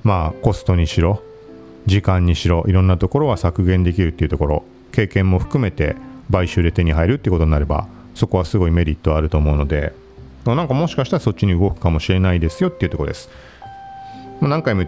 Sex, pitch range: male, 85-125 Hz